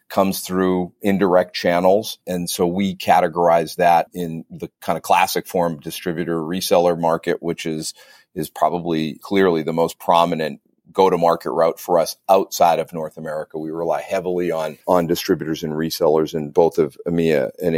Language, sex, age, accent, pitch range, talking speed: English, male, 40-59, American, 80-95 Hz, 160 wpm